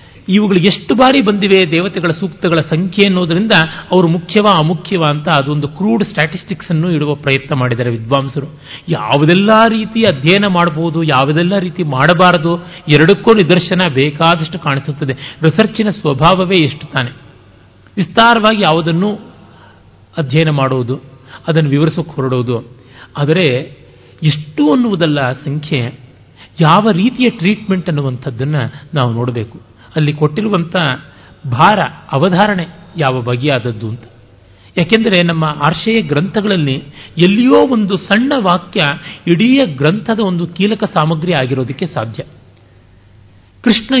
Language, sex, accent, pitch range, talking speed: Kannada, male, native, 135-190 Hz, 100 wpm